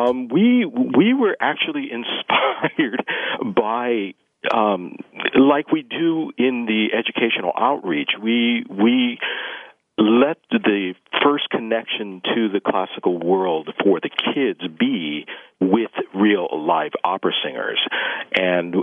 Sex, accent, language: male, American, English